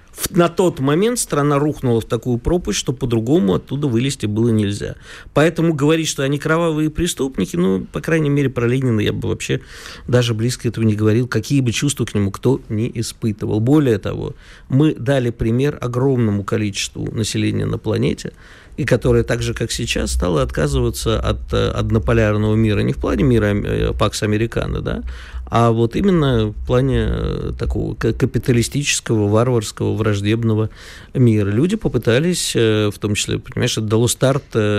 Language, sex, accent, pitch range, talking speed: Russian, male, native, 110-150 Hz, 150 wpm